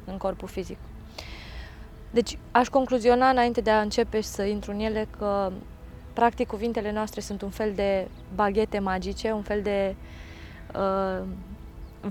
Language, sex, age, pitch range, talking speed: Romanian, female, 20-39, 200-230 Hz, 140 wpm